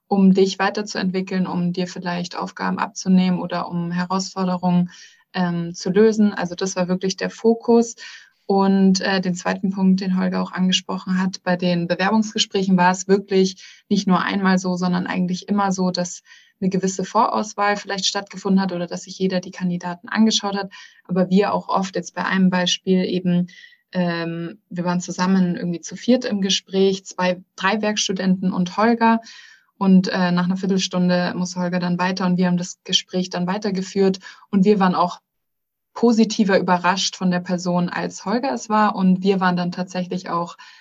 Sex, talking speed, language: female, 170 wpm, German